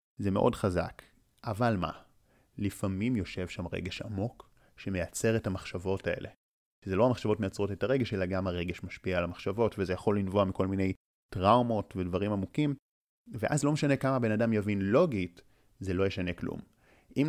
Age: 30-49